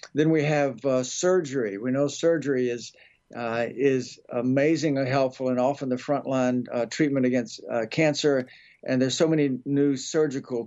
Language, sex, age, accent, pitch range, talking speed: English, male, 60-79, American, 125-145 Hz, 155 wpm